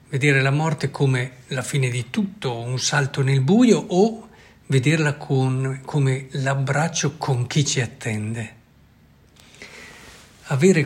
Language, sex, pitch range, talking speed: Italian, male, 125-155 Hz, 115 wpm